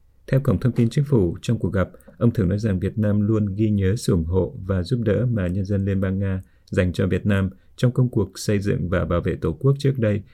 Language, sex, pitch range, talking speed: Vietnamese, male, 90-110 Hz, 265 wpm